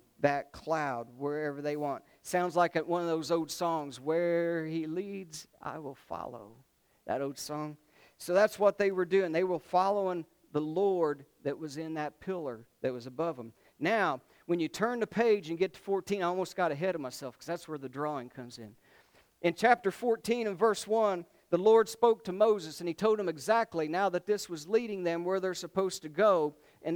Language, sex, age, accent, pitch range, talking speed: English, male, 50-69, American, 150-195 Hz, 205 wpm